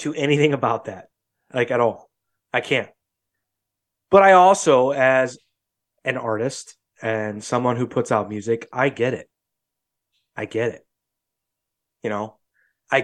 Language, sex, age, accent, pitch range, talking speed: English, male, 20-39, American, 115-155 Hz, 140 wpm